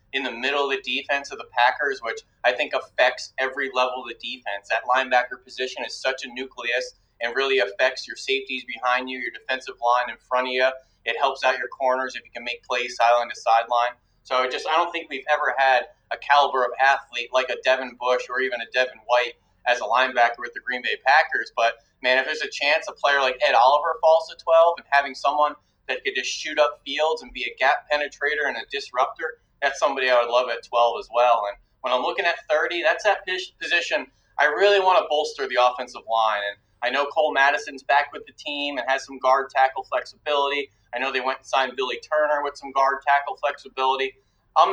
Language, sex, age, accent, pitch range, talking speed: English, male, 30-49, American, 125-145 Hz, 225 wpm